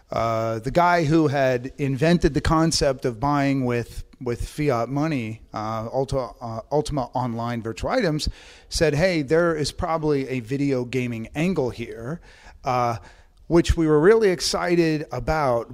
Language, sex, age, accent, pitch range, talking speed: English, male, 40-59, American, 120-160 Hz, 140 wpm